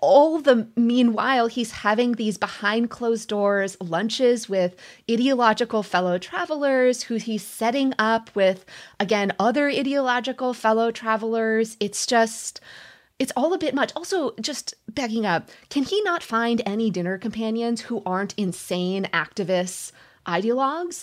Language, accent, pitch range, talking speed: English, American, 180-250 Hz, 130 wpm